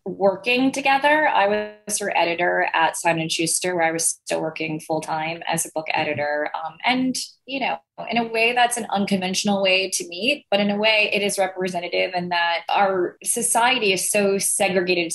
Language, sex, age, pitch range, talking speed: English, female, 20-39, 165-210 Hz, 180 wpm